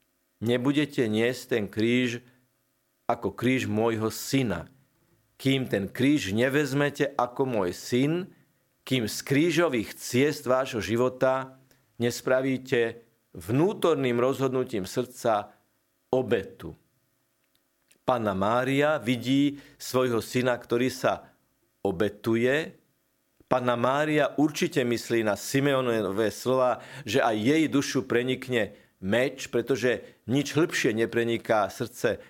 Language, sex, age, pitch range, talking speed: Slovak, male, 50-69, 115-140 Hz, 95 wpm